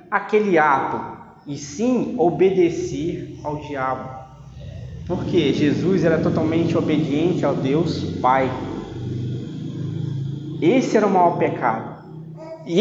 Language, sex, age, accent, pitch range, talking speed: Portuguese, male, 20-39, Brazilian, 140-175 Hz, 100 wpm